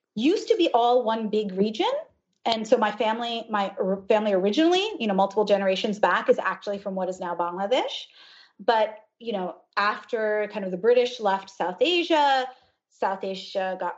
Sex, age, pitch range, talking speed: female, 30-49, 200-275 Hz, 170 wpm